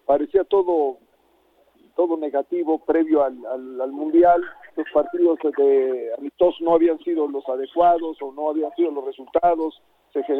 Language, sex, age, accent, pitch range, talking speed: Spanish, male, 50-69, Mexican, 155-215 Hz, 145 wpm